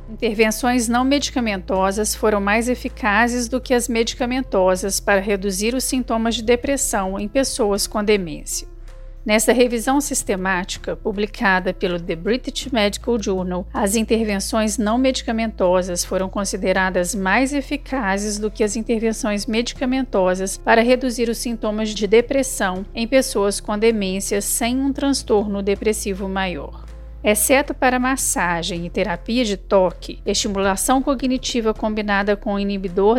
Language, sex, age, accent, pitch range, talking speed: Portuguese, female, 40-59, Brazilian, 195-250 Hz, 125 wpm